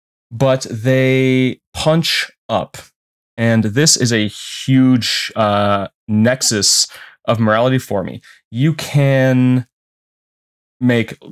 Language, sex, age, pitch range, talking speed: English, male, 20-39, 105-130 Hz, 95 wpm